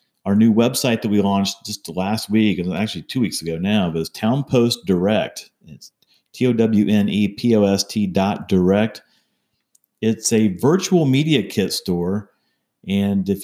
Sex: male